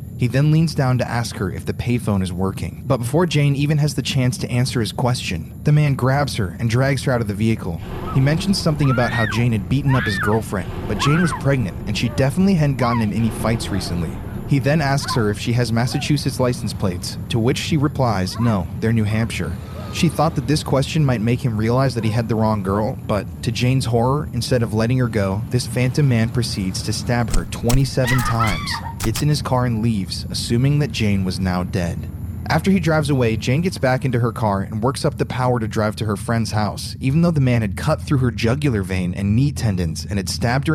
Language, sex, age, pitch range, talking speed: English, male, 20-39, 105-135 Hz, 235 wpm